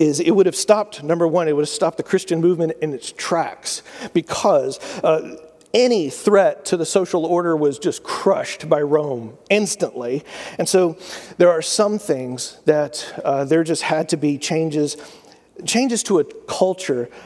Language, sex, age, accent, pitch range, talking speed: English, male, 40-59, American, 150-200 Hz, 170 wpm